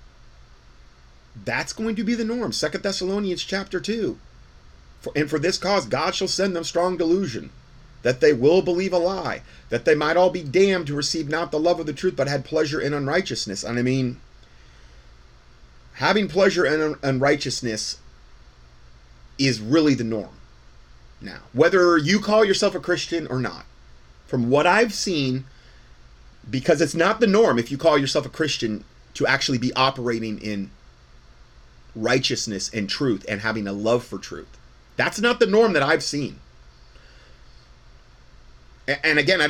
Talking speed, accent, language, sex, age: 160 wpm, American, English, male, 30-49